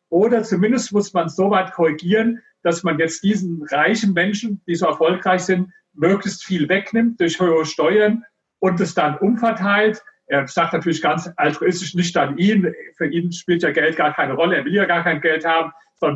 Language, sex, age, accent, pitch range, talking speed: German, male, 40-59, German, 165-195 Hz, 195 wpm